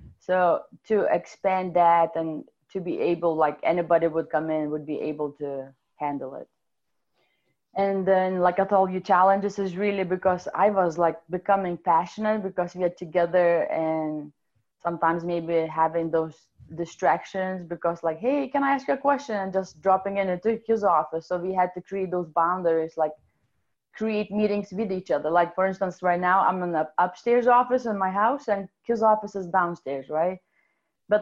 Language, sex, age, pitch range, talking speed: English, female, 20-39, 165-195 Hz, 180 wpm